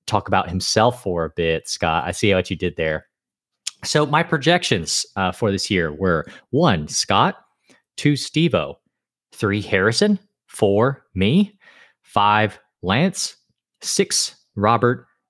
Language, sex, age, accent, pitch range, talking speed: English, male, 30-49, American, 90-110 Hz, 130 wpm